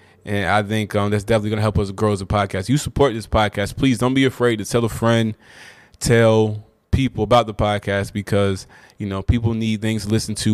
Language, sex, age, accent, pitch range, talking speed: English, male, 20-39, American, 100-115 Hz, 230 wpm